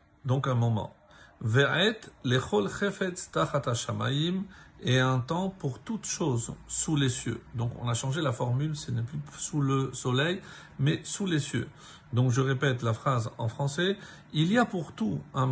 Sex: male